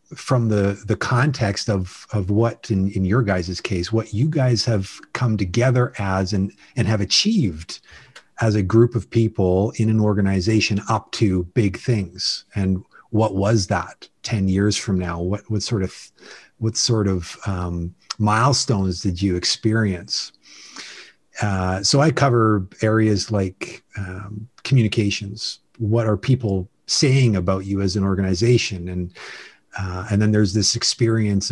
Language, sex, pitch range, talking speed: English, male, 100-115 Hz, 150 wpm